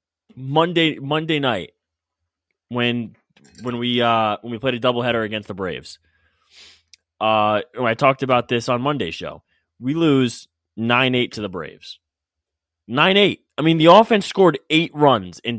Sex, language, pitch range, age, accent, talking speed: male, English, 90-145 Hz, 20-39, American, 160 wpm